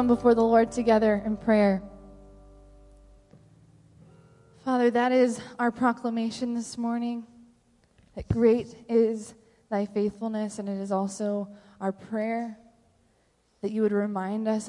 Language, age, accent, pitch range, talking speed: English, 20-39, American, 185-210 Hz, 120 wpm